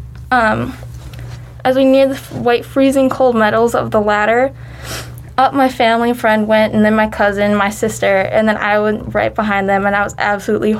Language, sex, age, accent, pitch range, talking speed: English, female, 10-29, American, 205-250 Hz, 190 wpm